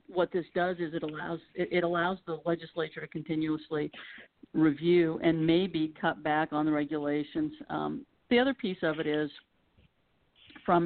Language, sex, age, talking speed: English, female, 50-69, 155 wpm